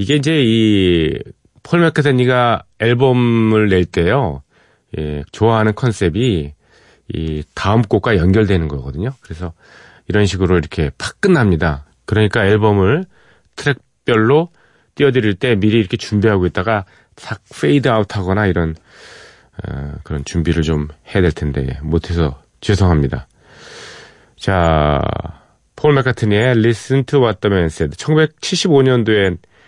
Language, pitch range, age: Korean, 90-130 Hz, 30-49